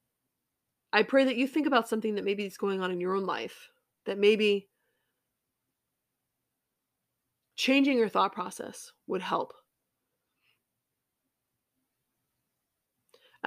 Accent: American